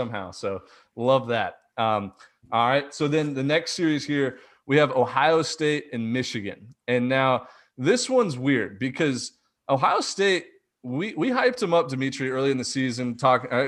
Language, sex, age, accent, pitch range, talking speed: English, male, 30-49, American, 110-140 Hz, 165 wpm